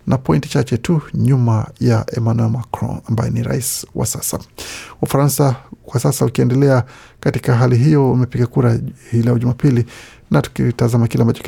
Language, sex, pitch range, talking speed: Swahili, male, 115-130 Hz, 145 wpm